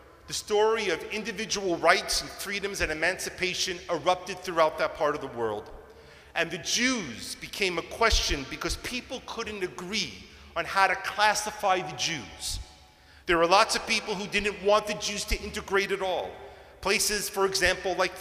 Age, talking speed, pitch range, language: 40-59, 165 wpm, 175-230 Hz, English